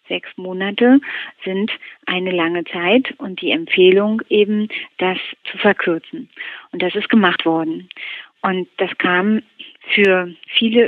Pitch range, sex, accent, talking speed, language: 185-225 Hz, female, German, 125 wpm, German